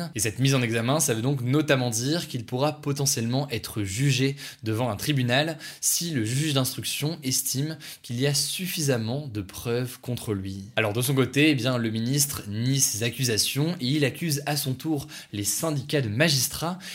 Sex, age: male, 20-39